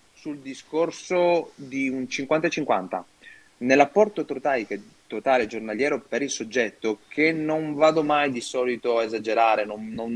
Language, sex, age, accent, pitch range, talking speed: Italian, male, 30-49, native, 115-140 Hz, 130 wpm